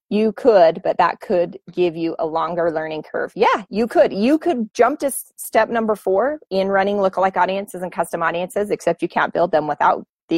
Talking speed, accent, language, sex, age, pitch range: 200 wpm, American, English, female, 30-49, 175-220 Hz